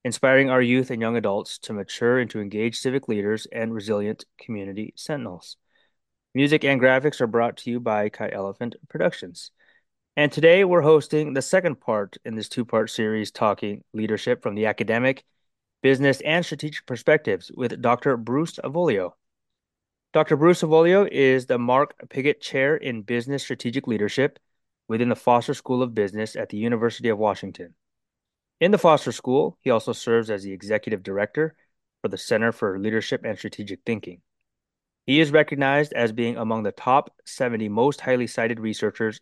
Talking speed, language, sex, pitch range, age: 160 wpm, English, male, 110-135 Hz, 20-39